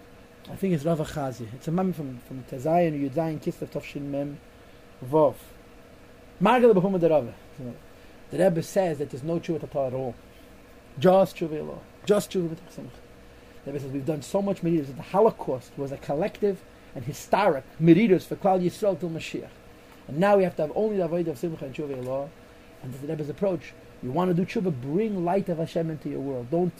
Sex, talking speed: male, 195 wpm